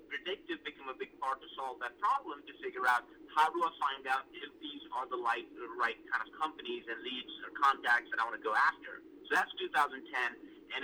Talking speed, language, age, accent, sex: 215 wpm, English, 30-49, American, male